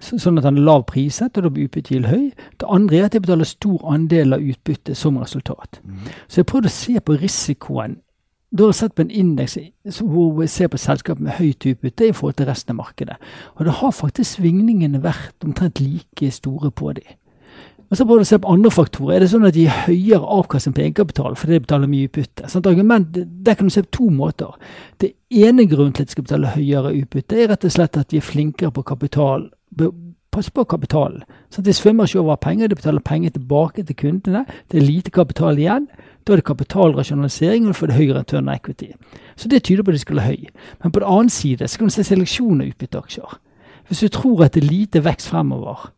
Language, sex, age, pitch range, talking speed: English, male, 60-79, 145-200 Hz, 225 wpm